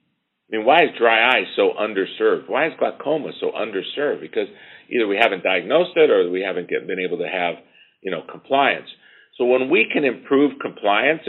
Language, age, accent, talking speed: English, 50-69, American, 185 wpm